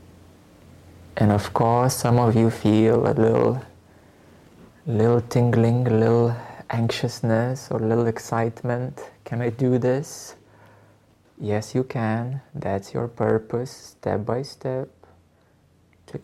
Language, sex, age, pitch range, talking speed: English, male, 20-39, 105-125 Hz, 120 wpm